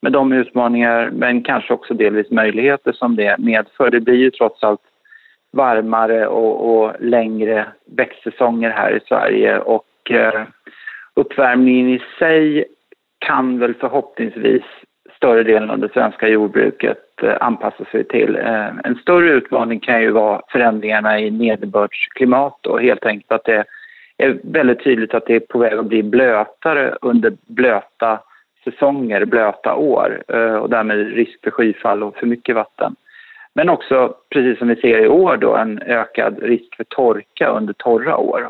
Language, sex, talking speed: Swedish, male, 155 wpm